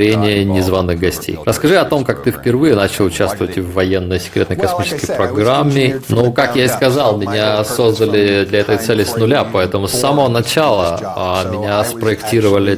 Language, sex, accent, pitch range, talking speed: Russian, male, native, 95-120 Hz, 155 wpm